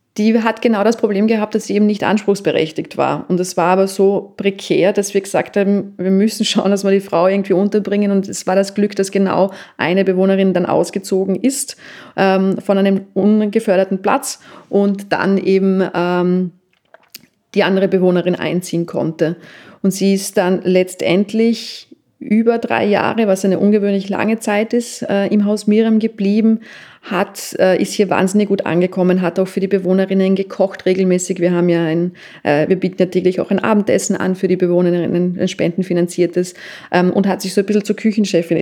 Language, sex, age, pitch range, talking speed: German, female, 30-49, 185-205 Hz, 180 wpm